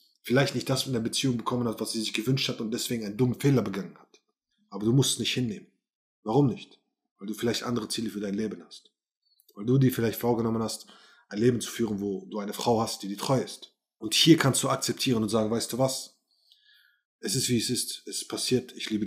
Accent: German